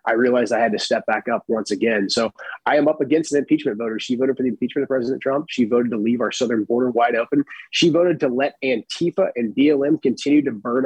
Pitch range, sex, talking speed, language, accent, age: 120-145 Hz, male, 250 wpm, English, American, 30-49